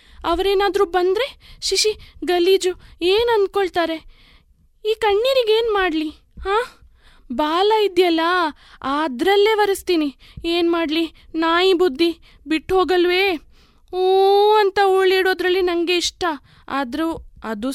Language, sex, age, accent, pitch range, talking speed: Kannada, female, 20-39, native, 295-380 Hz, 90 wpm